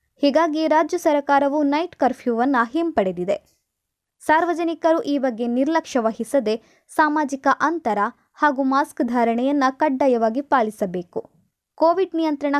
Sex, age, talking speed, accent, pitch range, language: female, 20-39, 95 wpm, native, 230-295 Hz, Kannada